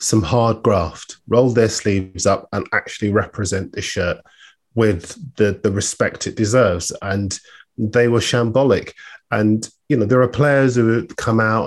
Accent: British